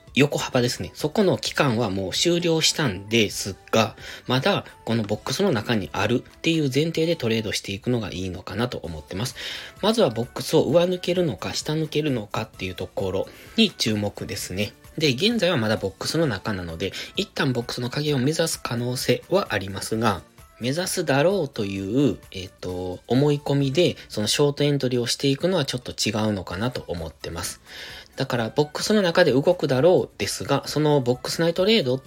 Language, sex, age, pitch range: Japanese, male, 20-39, 100-150 Hz